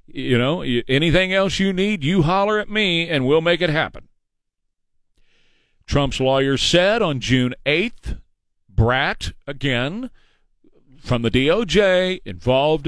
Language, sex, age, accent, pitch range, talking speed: English, male, 50-69, American, 150-205 Hz, 125 wpm